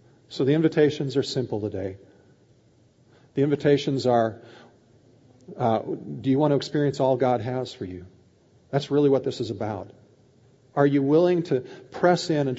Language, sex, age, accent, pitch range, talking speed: English, male, 50-69, American, 115-145 Hz, 155 wpm